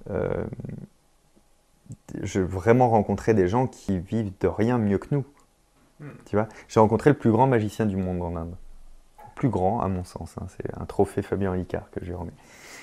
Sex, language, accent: male, French, French